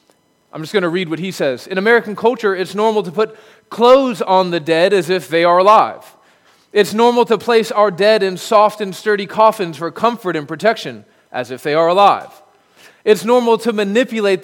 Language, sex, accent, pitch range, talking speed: English, male, American, 165-210 Hz, 200 wpm